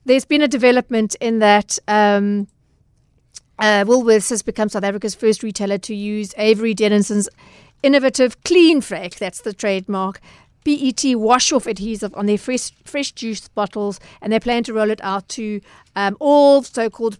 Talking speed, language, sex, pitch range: 155 wpm, English, female, 200-235 Hz